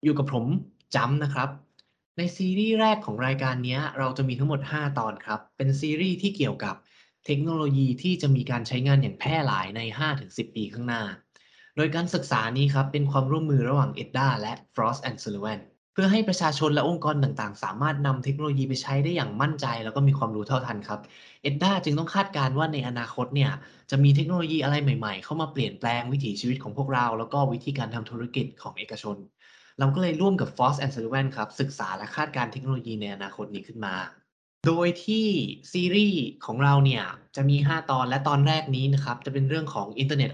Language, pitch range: Thai, 120-150 Hz